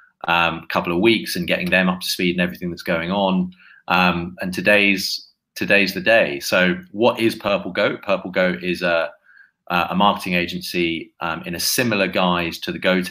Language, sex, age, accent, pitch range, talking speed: English, male, 30-49, British, 85-95 Hz, 190 wpm